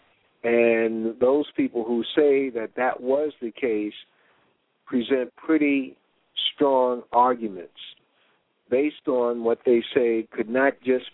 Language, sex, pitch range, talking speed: English, male, 115-135 Hz, 120 wpm